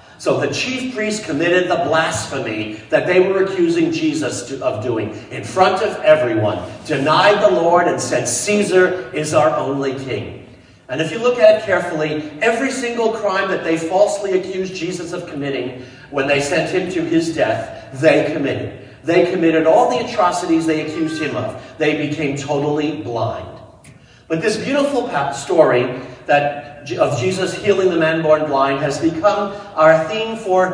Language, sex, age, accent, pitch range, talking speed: English, male, 40-59, American, 145-200 Hz, 165 wpm